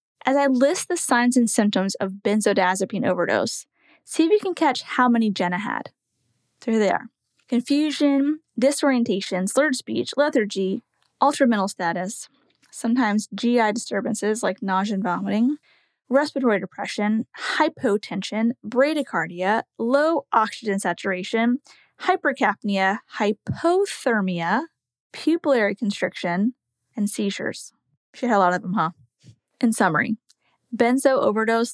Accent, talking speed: American, 115 wpm